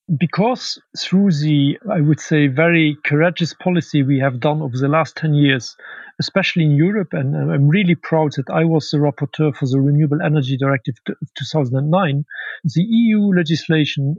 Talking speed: 180 wpm